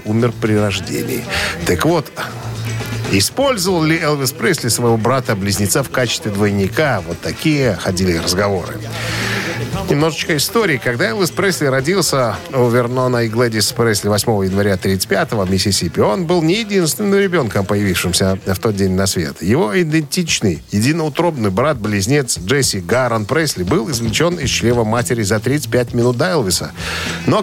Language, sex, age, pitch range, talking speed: Russian, male, 50-69, 105-160 Hz, 140 wpm